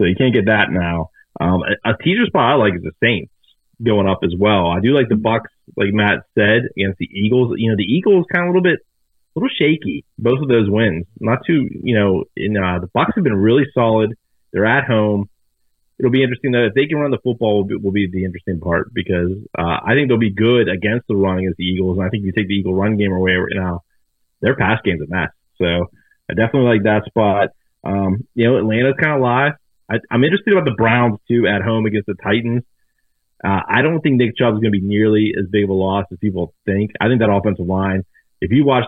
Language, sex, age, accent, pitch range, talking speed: English, male, 30-49, American, 95-120 Hz, 245 wpm